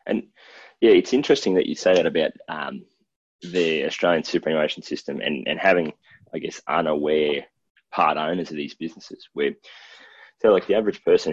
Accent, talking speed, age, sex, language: Australian, 165 wpm, 20-39, male, English